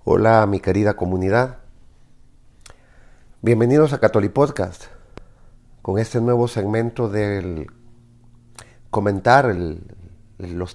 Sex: male